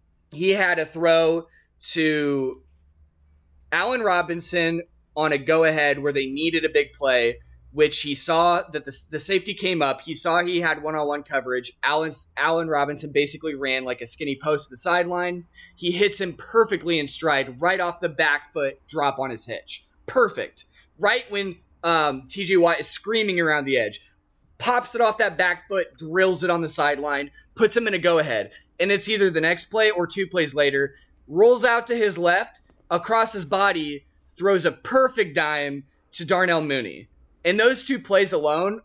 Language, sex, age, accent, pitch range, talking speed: English, male, 20-39, American, 145-195 Hz, 175 wpm